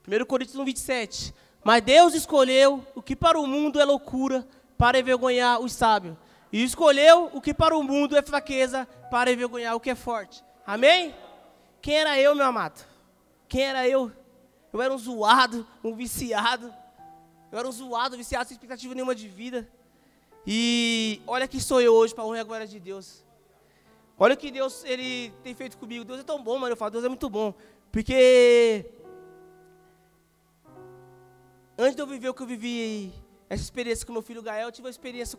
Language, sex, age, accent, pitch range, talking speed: Portuguese, male, 20-39, Brazilian, 220-260 Hz, 185 wpm